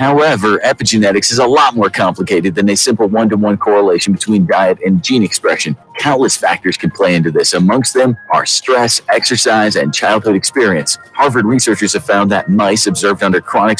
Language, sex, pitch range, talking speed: English, male, 100-125 Hz, 175 wpm